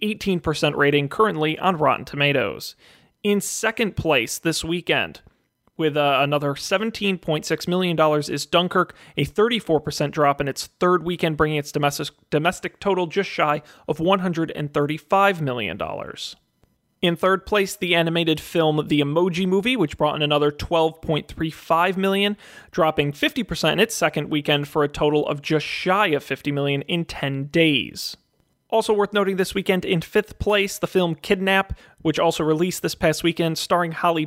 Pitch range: 150-185 Hz